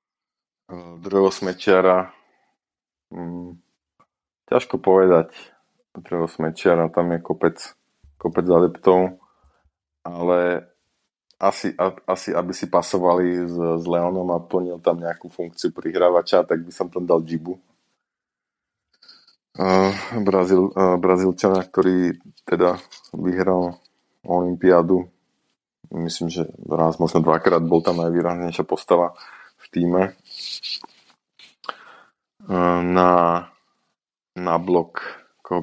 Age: 20-39